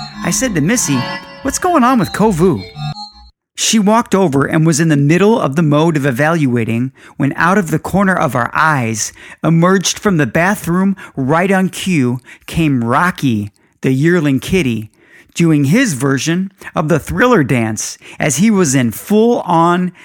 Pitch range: 130-180 Hz